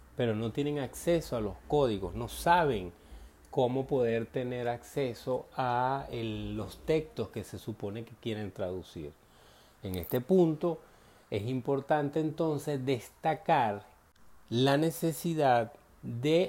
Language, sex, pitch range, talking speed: Spanish, male, 100-135 Hz, 115 wpm